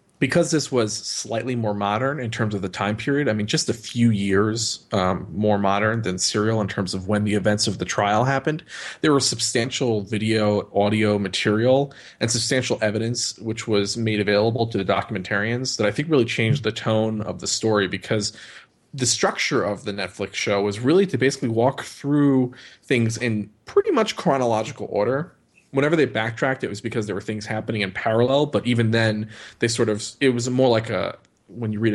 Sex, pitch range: male, 105-120 Hz